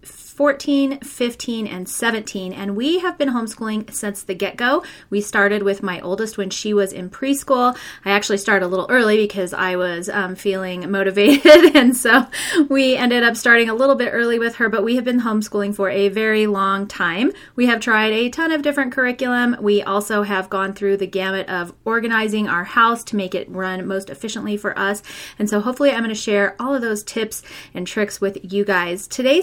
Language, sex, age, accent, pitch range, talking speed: English, female, 30-49, American, 195-245 Hz, 205 wpm